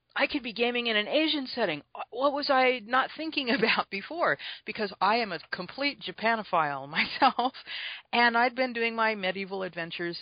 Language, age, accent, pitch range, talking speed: English, 40-59, American, 155-220 Hz, 170 wpm